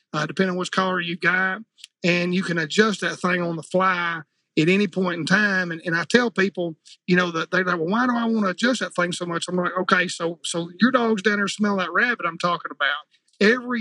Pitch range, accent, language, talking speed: 170-200 Hz, American, English, 250 wpm